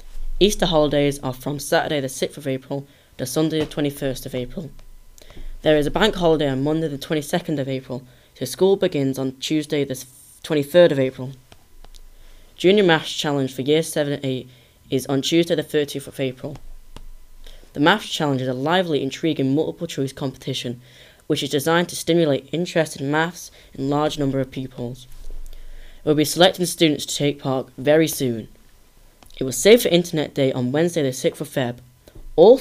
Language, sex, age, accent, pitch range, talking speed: English, female, 10-29, British, 130-155 Hz, 175 wpm